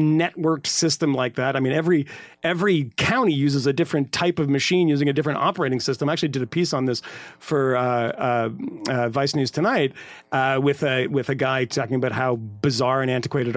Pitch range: 140-205 Hz